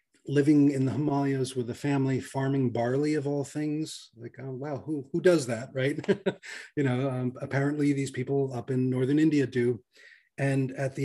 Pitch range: 130-150 Hz